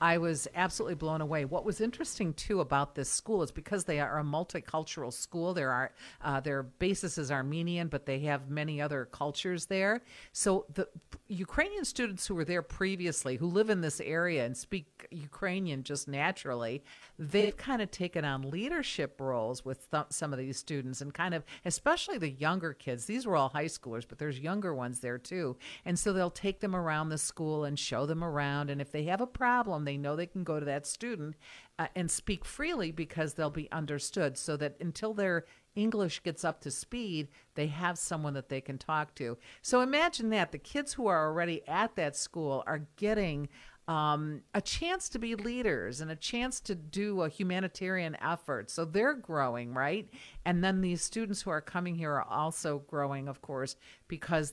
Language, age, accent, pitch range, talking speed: English, 50-69, American, 145-190 Hz, 195 wpm